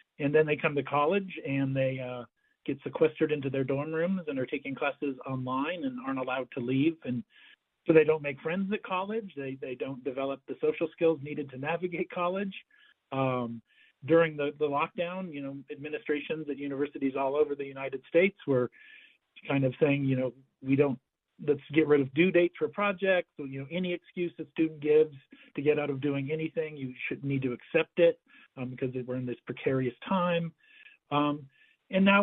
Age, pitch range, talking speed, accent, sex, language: 50-69, 135-175 Hz, 195 wpm, American, male, English